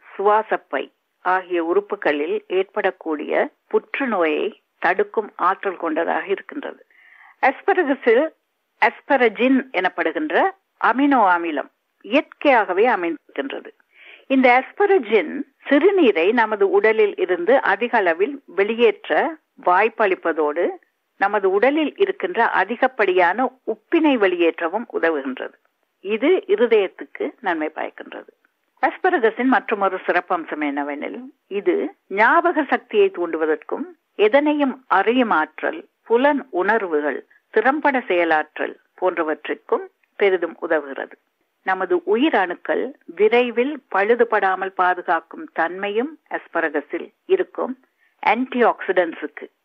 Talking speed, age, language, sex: 65 wpm, 60-79, Tamil, female